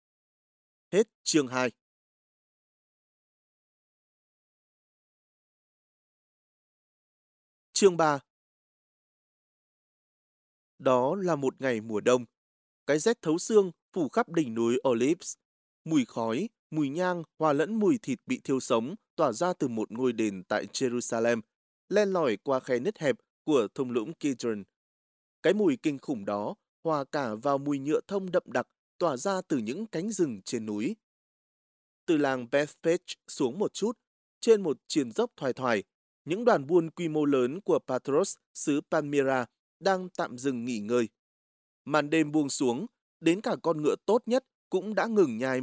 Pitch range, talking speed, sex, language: 125-185 Hz, 145 wpm, male, Vietnamese